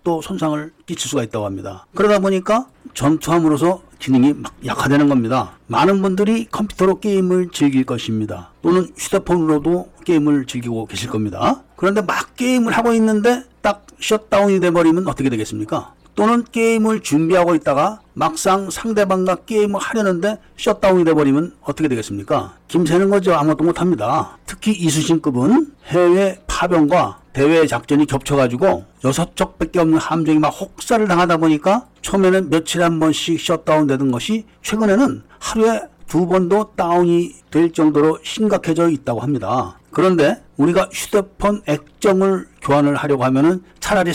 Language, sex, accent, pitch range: Korean, male, native, 145-195 Hz